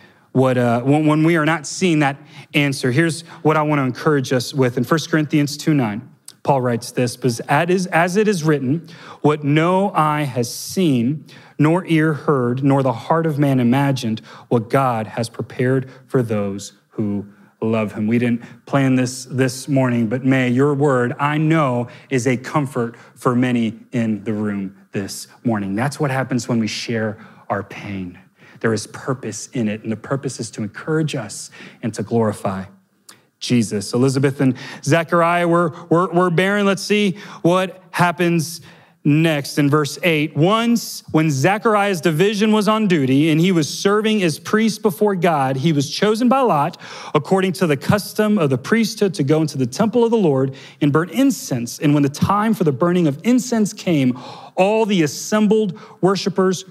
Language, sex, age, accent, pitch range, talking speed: English, male, 30-49, American, 125-175 Hz, 175 wpm